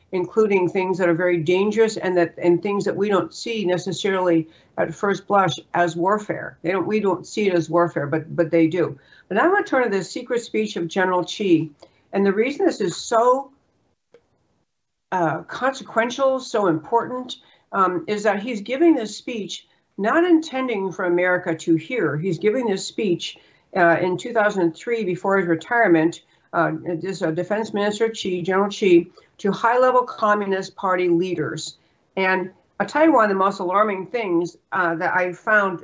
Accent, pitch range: American, 170-215 Hz